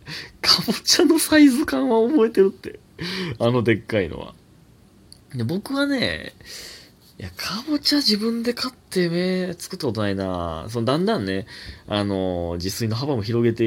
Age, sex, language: 20-39, male, Japanese